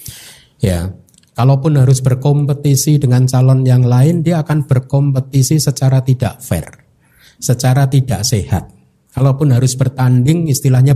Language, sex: Indonesian, male